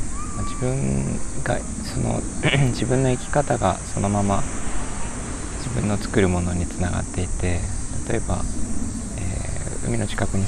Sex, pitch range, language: male, 90-110 Hz, Japanese